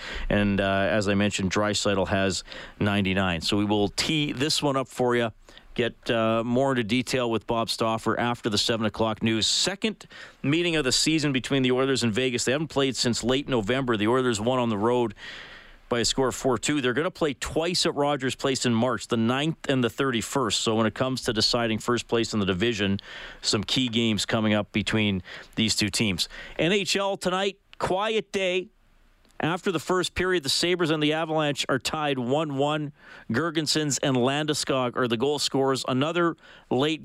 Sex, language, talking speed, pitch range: male, English, 190 wpm, 115-160 Hz